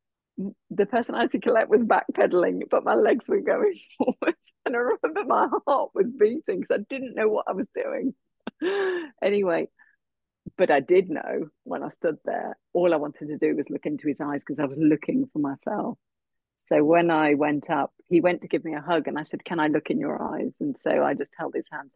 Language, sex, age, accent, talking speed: English, female, 40-59, British, 225 wpm